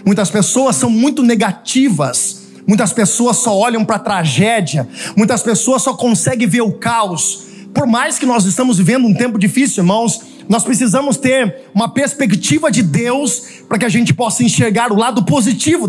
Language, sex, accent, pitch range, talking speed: Portuguese, male, Brazilian, 210-260 Hz, 170 wpm